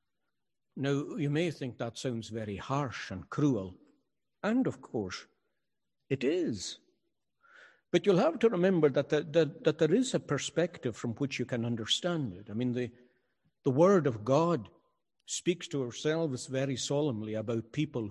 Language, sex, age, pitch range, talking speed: English, male, 60-79, 120-155 Hz, 150 wpm